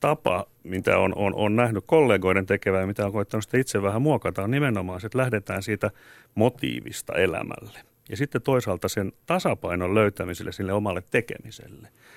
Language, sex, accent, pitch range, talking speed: Finnish, male, native, 100-130 Hz, 155 wpm